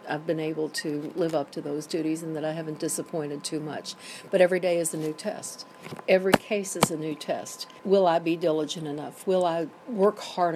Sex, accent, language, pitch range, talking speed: female, American, English, 160-185 Hz, 215 wpm